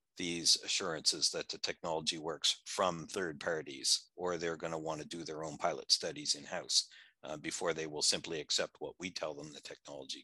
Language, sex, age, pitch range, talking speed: English, male, 60-79, 90-120 Hz, 195 wpm